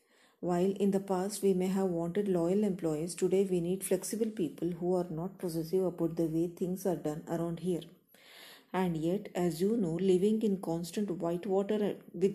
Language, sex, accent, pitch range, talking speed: Kannada, female, native, 175-200 Hz, 185 wpm